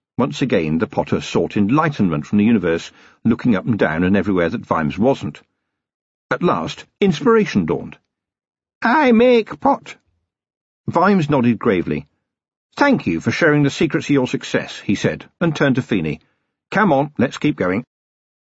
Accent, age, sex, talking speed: British, 50-69, male, 155 wpm